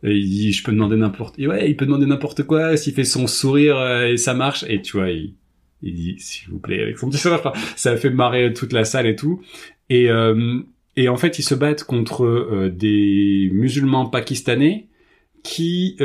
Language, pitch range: French, 115-150 Hz